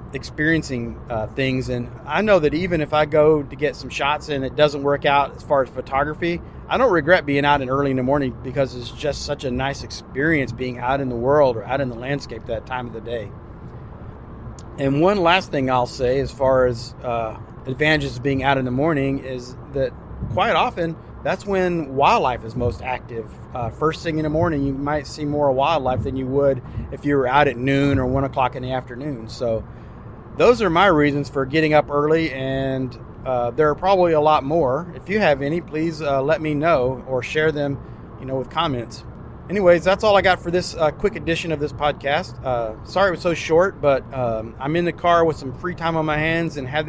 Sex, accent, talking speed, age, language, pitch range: male, American, 225 wpm, 30-49, English, 125-155 Hz